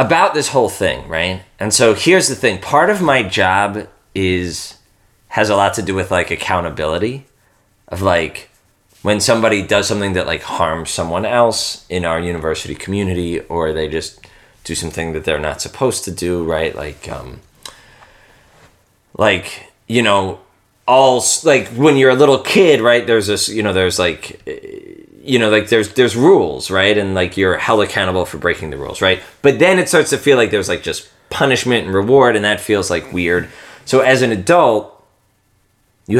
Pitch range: 95-125 Hz